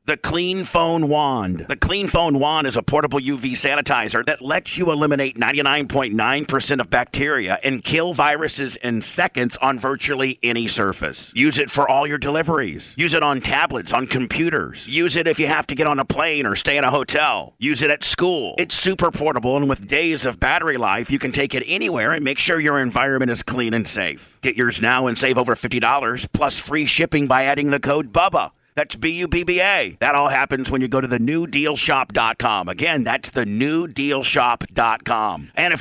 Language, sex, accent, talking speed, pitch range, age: English, male, American, 195 wpm, 125-155 Hz, 50-69